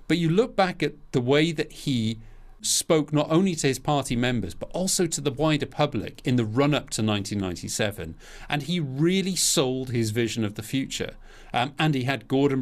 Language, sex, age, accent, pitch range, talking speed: English, male, 40-59, British, 110-145 Hz, 195 wpm